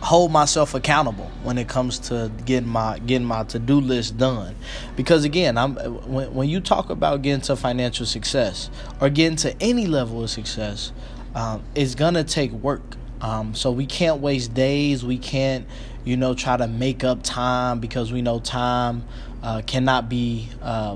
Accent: American